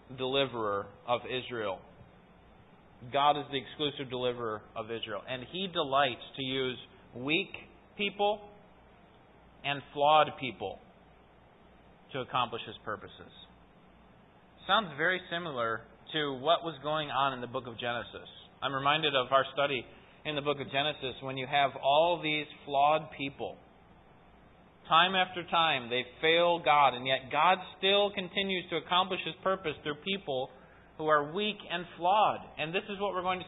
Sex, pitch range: male, 135-175 Hz